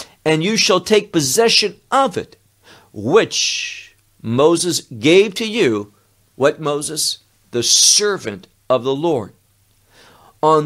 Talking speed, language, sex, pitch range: 115 wpm, English, male, 115-175 Hz